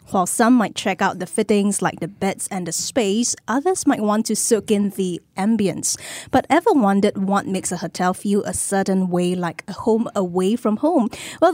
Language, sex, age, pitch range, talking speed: English, female, 20-39, 190-240 Hz, 205 wpm